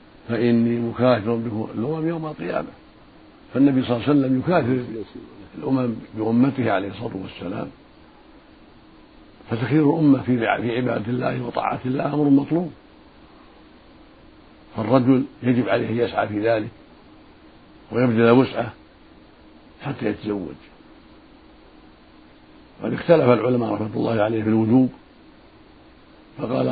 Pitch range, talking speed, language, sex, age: 110-130 Hz, 105 wpm, Arabic, male, 60-79